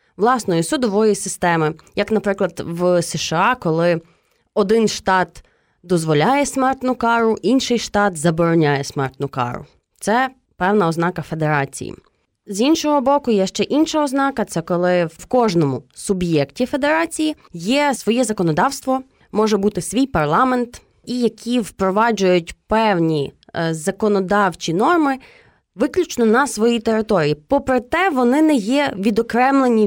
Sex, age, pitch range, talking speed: female, 20-39, 180-250 Hz, 115 wpm